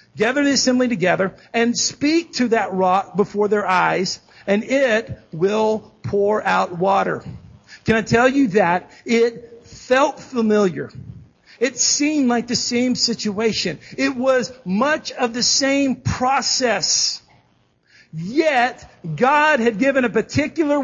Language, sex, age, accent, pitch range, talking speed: English, male, 50-69, American, 210-270 Hz, 130 wpm